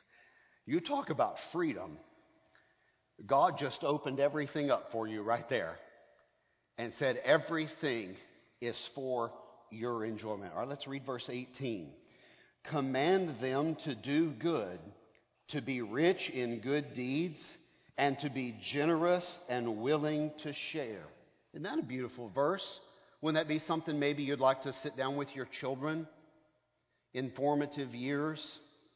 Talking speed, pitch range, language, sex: 135 wpm, 125-155 Hz, English, male